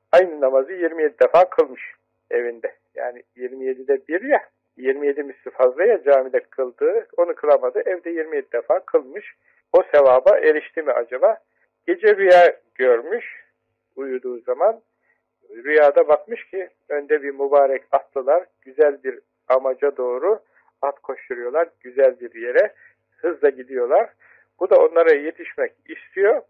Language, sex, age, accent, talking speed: Turkish, male, 60-79, native, 125 wpm